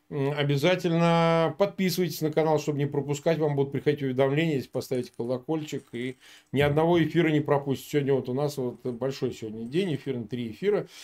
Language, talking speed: Russian, 175 wpm